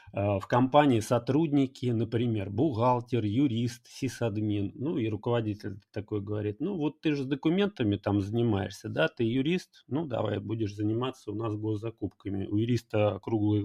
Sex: male